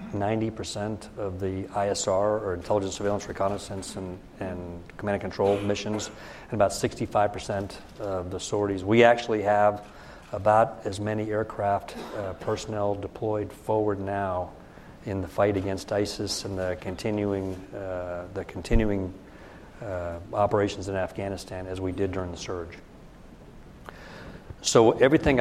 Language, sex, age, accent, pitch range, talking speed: English, male, 50-69, American, 95-105 Hz, 130 wpm